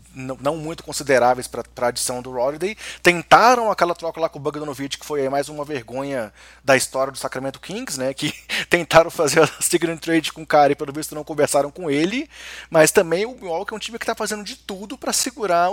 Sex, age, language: male, 20-39, Portuguese